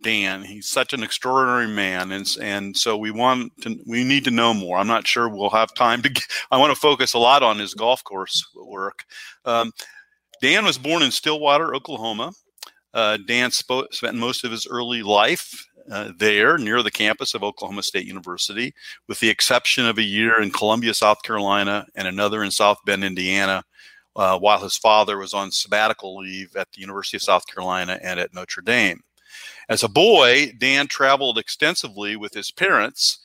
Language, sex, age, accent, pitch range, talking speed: English, male, 40-59, American, 105-130 Hz, 190 wpm